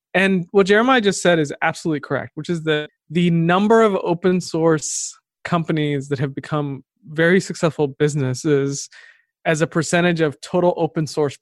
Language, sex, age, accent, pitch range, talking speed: English, male, 20-39, American, 145-190 Hz, 160 wpm